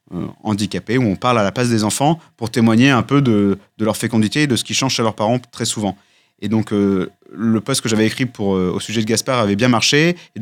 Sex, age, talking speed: male, 30-49, 260 wpm